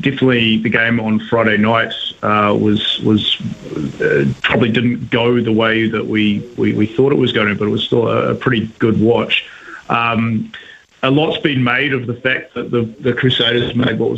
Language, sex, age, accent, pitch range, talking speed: English, male, 30-49, Australian, 110-140 Hz, 210 wpm